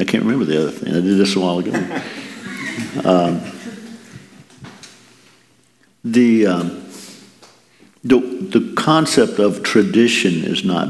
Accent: American